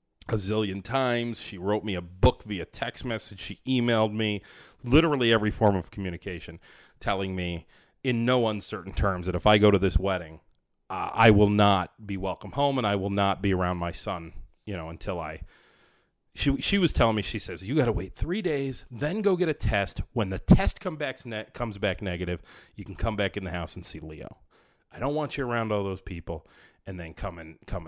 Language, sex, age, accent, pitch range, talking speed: English, male, 30-49, American, 95-115 Hz, 215 wpm